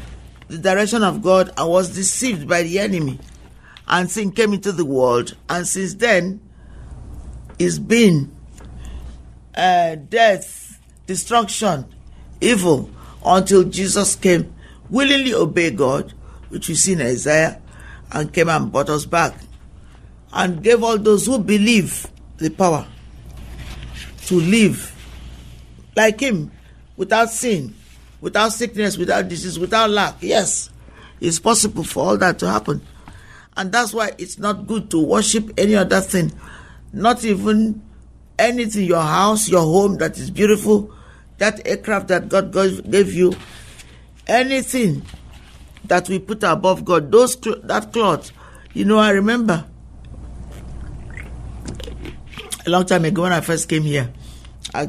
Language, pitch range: English, 135-210 Hz